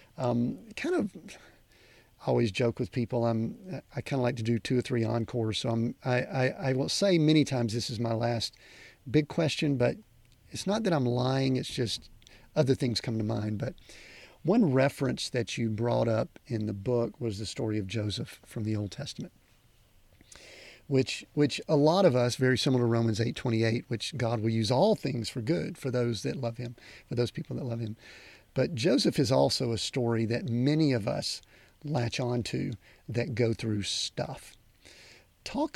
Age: 40-59